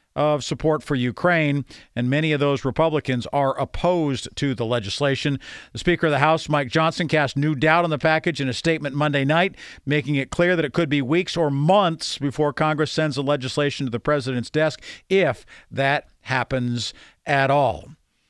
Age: 50-69